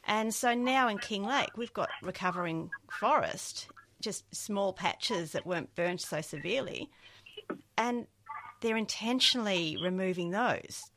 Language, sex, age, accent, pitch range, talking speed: English, female, 40-59, Australian, 160-215 Hz, 125 wpm